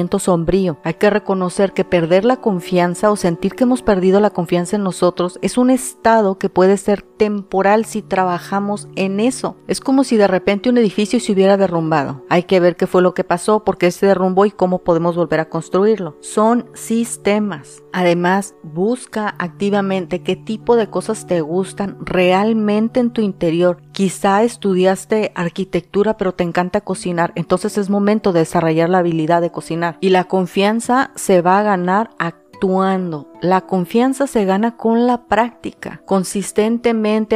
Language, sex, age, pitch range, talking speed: Spanish, female, 40-59, 180-225 Hz, 165 wpm